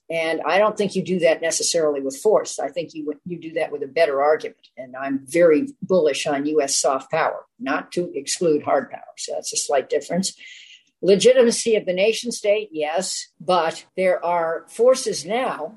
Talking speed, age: 185 wpm, 50-69